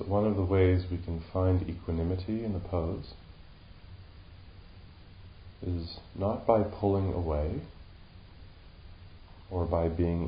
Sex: female